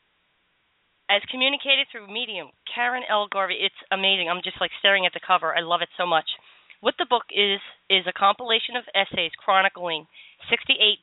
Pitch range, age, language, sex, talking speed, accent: 180-225 Hz, 40-59, English, female, 175 wpm, American